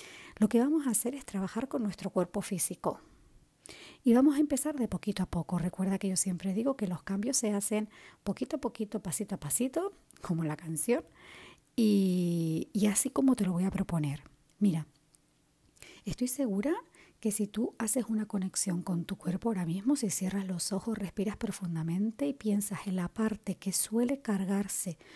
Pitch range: 175-225 Hz